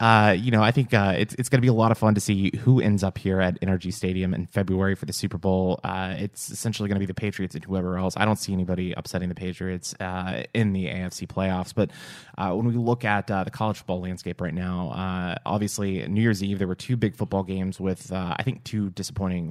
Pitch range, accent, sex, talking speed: 95-105 Hz, American, male, 255 wpm